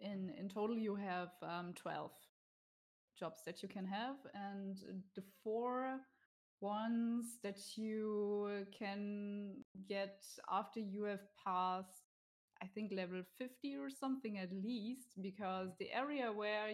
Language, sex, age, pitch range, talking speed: English, female, 20-39, 185-210 Hz, 130 wpm